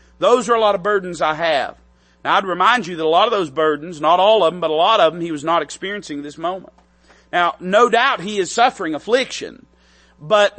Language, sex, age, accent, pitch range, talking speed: English, male, 40-59, American, 160-220 Hz, 230 wpm